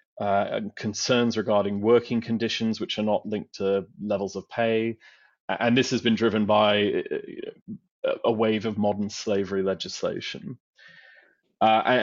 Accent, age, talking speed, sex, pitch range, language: British, 30-49, 135 wpm, male, 105-125 Hz, English